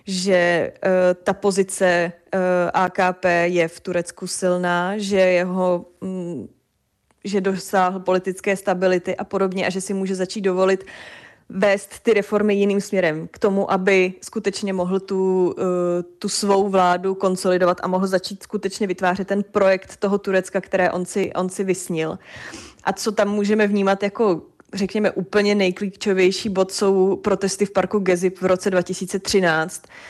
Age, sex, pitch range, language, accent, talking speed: 20-39, female, 185-200 Hz, Czech, native, 135 wpm